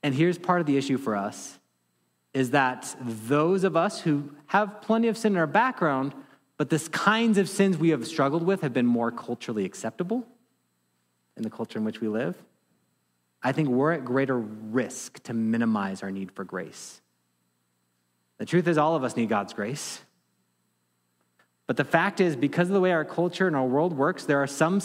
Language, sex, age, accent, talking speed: English, male, 30-49, American, 195 wpm